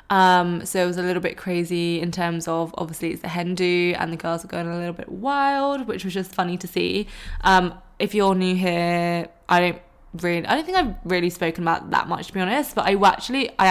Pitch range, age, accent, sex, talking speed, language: 170-190 Hz, 20-39, British, female, 235 wpm, English